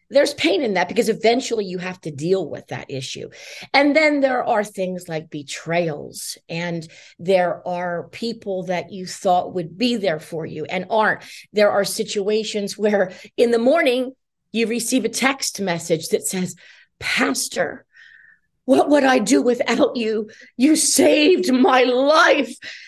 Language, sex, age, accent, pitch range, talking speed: English, female, 40-59, American, 180-255 Hz, 155 wpm